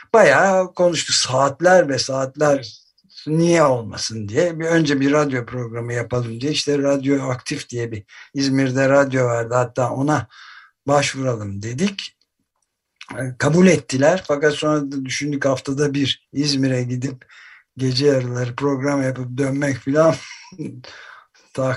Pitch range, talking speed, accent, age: 125-155 Hz, 120 wpm, native, 60-79